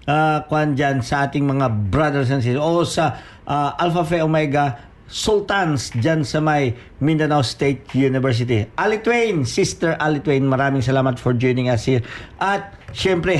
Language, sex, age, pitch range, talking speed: Filipino, male, 50-69, 130-170 Hz, 155 wpm